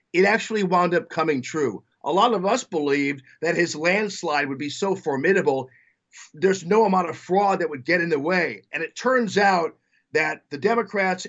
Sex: male